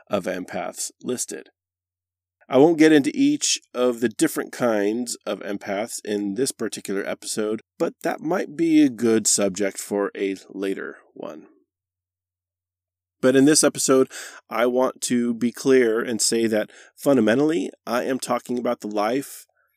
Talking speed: 145 wpm